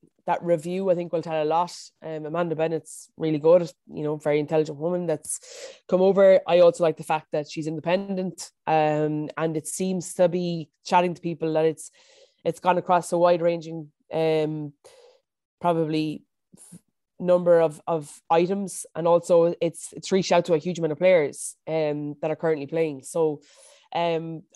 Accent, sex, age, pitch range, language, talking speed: Irish, female, 20-39, 160-180 Hz, English, 170 wpm